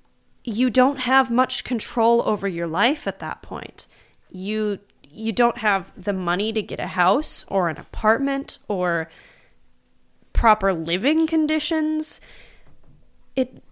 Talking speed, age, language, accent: 125 wpm, 20-39, English, American